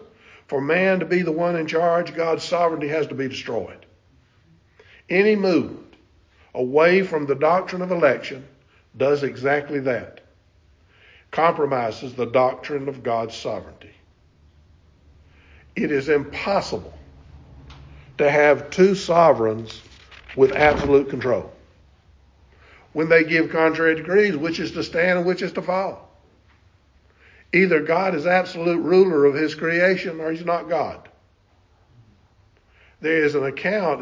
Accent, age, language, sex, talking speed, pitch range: American, 50-69, English, male, 125 wpm, 95-160 Hz